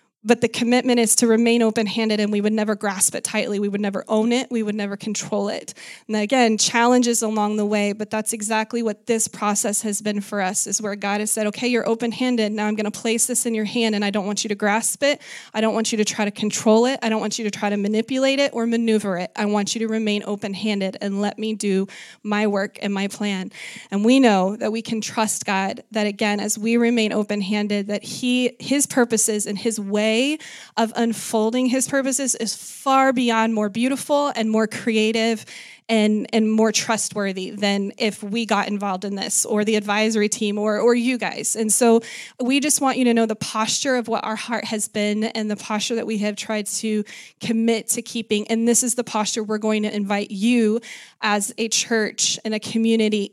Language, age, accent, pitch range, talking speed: English, 20-39, American, 210-230 Hz, 220 wpm